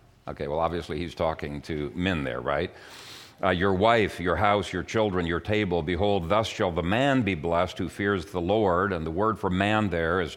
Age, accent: 50-69, American